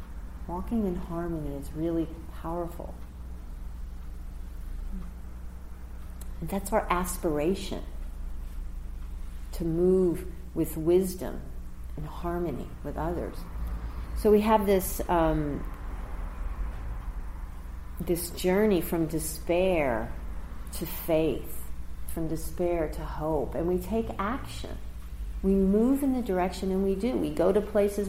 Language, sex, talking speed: English, female, 105 wpm